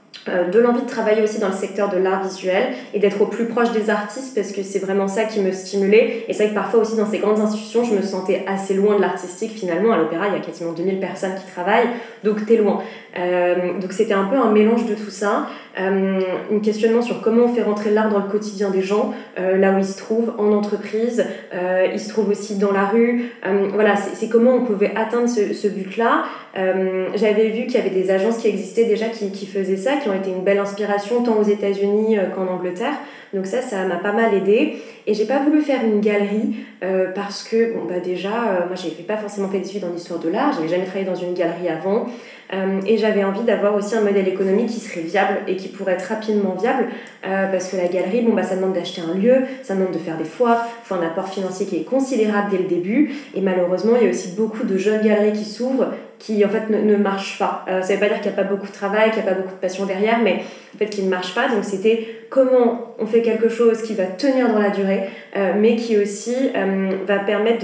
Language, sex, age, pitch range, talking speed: French, female, 20-39, 190-225 Hz, 255 wpm